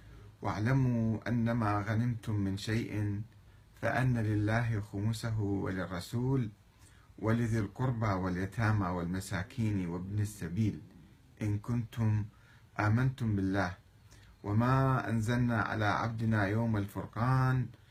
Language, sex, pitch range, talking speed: Arabic, male, 100-115 Hz, 85 wpm